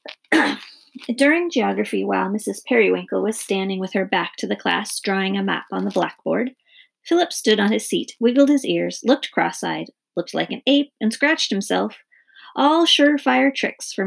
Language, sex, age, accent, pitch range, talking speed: English, female, 30-49, American, 210-290 Hz, 170 wpm